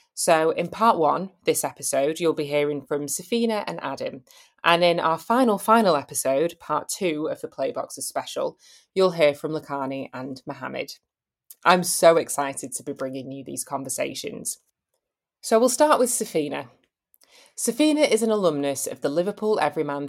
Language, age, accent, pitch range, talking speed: English, 20-39, British, 145-200 Hz, 160 wpm